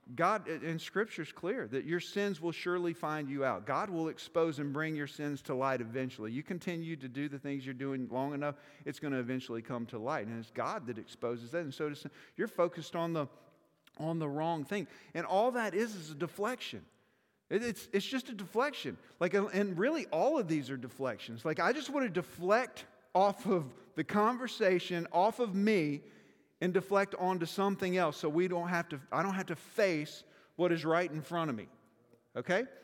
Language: English